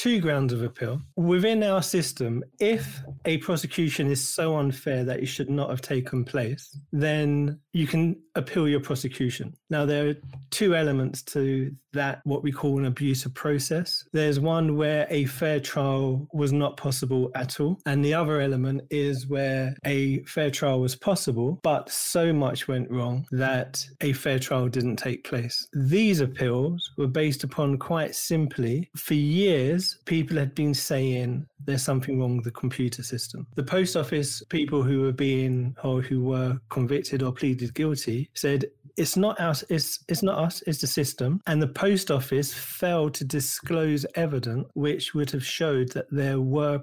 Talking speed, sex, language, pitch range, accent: 165 wpm, male, English, 130-155 Hz, British